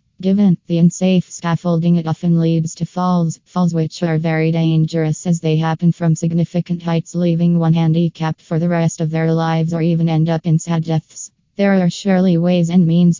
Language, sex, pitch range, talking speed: English, female, 165-180 Hz, 190 wpm